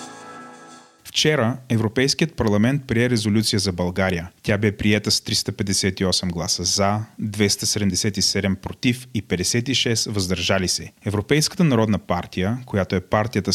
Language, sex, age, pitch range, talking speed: Bulgarian, male, 30-49, 95-125 Hz, 115 wpm